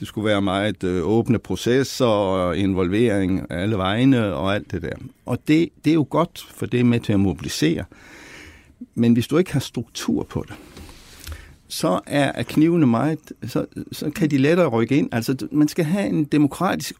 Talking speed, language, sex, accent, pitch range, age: 185 wpm, Danish, male, native, 115-155 Hz, 60-79